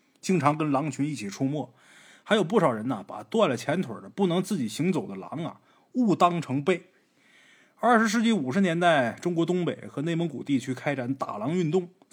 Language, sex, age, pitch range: Chinese, male, 20-39, 145-230 Hz